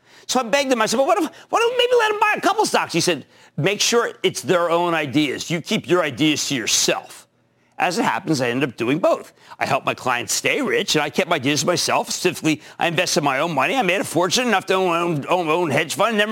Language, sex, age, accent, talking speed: English, male, 50-69, American, 265 wpm